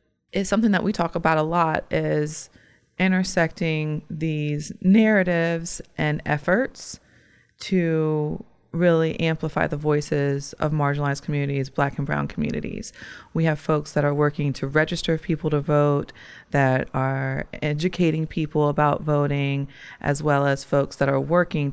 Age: 30-49